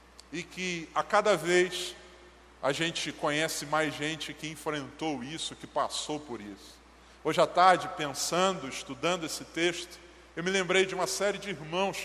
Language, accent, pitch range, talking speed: Portuguese, Brazilian, 150-185 Hz, 160 wpm